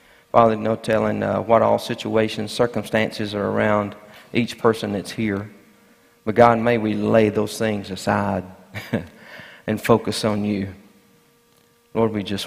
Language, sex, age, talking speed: English, male, 50-69, 140 wpm